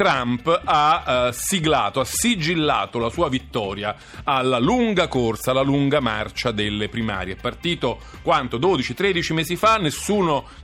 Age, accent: 40-59, native